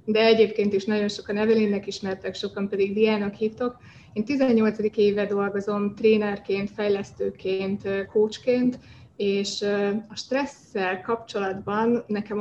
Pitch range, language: 200-220 Hz, Hungarian